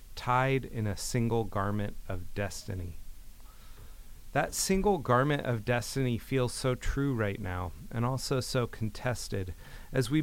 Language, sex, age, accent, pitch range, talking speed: English, male, 30-49, American, 105-130 Hz, 135 wpm